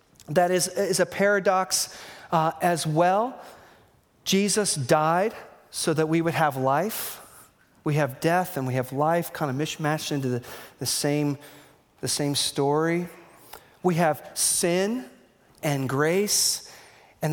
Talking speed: 135 wpm